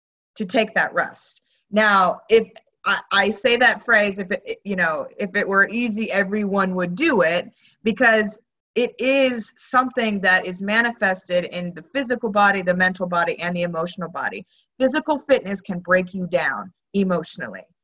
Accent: American